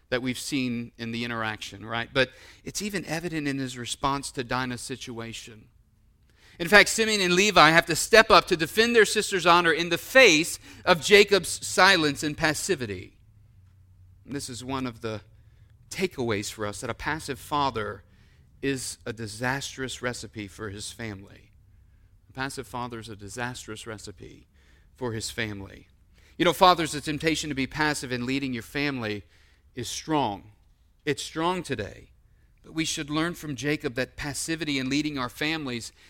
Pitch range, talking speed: 105-160 Hz, 165 wpm